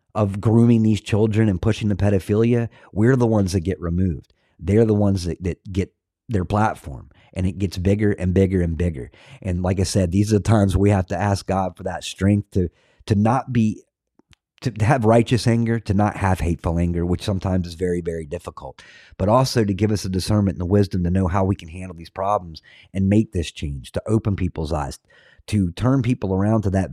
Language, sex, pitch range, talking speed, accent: English, male, 90-105 Hz, 215 wpm, American